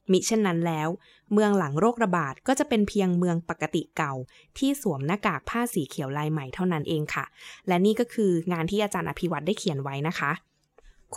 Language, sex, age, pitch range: Thai, female, 20-39, 165-215 Hz